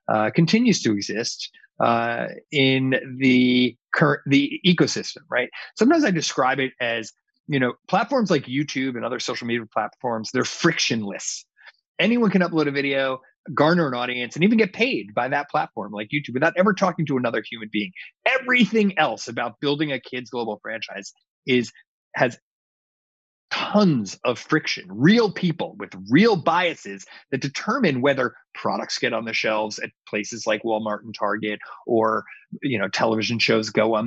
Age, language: 30-49, English